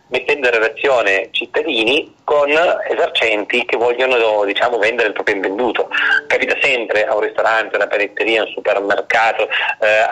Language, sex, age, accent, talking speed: Italian, male, 30-49, native, 150 wpm